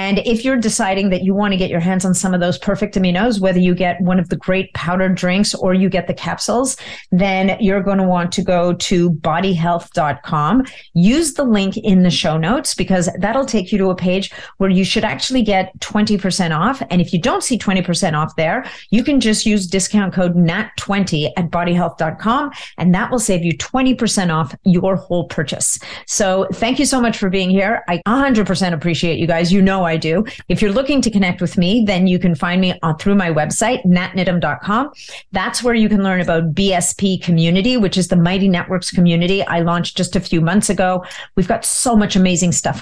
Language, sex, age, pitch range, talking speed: English, female, 40-59, 175-205 Hz, 210 wpm